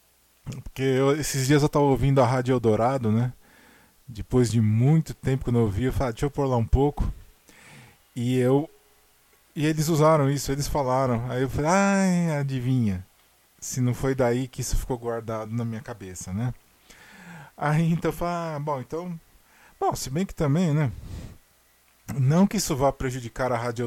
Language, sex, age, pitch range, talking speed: Portuguese, male, 20-39, 115-150 Hz, 180 wpm